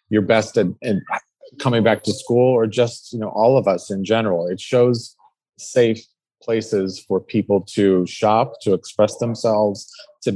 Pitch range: 100-115 Hz